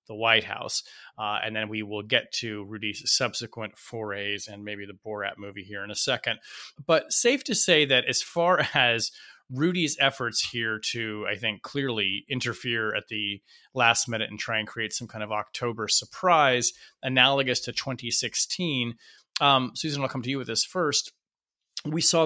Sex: male